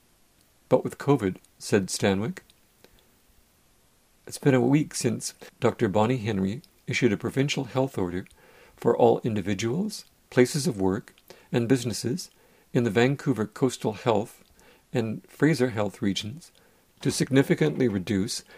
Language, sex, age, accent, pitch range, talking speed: English, male, 50-69, American, 100-130 Hz, 125 wpm